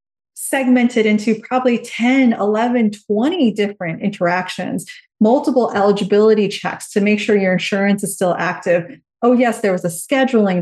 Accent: American